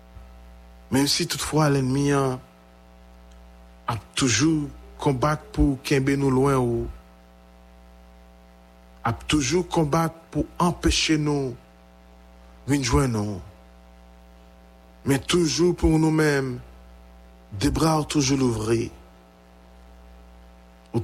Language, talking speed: English, 85 wpm